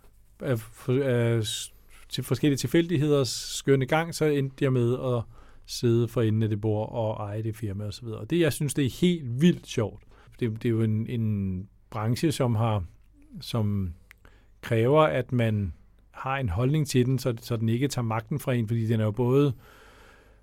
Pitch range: 110-140 Hz